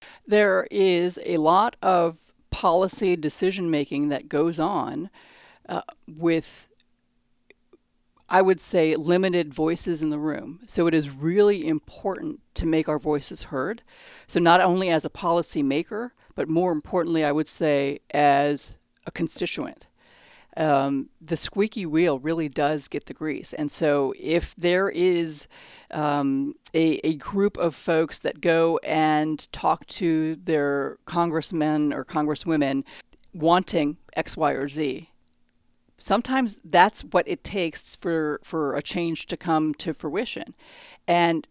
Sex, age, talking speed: female, 50-69, 135 wpm